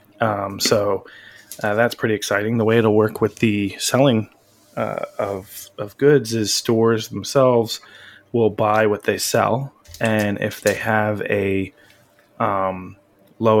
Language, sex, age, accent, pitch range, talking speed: English, male, 20-39, American, 100-120 Hz, 140 wpm